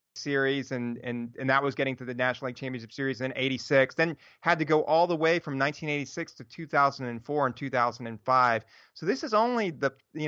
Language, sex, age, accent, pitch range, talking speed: English, male, 30-49, American, 130-150 Hz, 200 wpm